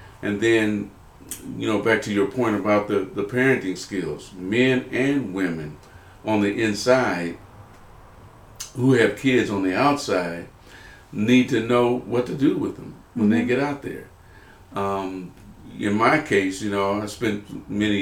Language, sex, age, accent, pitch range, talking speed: English, male, 50-69, American, 95-115 Hz, 155 wpm